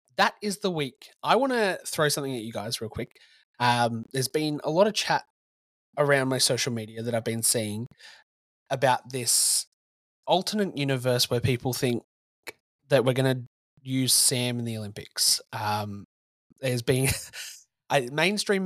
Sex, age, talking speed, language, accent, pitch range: male, 20-39, 160 wpm, English, Australian, 110-140 Hz